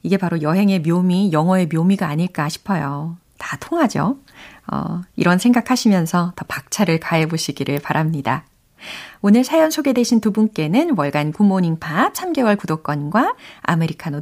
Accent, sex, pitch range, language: native, female, 170-280 Hz, Korean